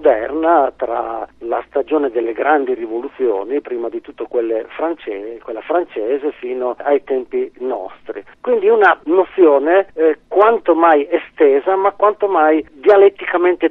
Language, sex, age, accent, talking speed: Italian, male, 40-59, native, 125 wpm